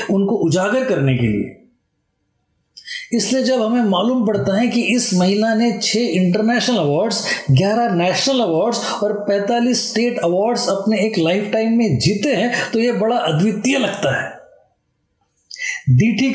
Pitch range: 190-235 Hz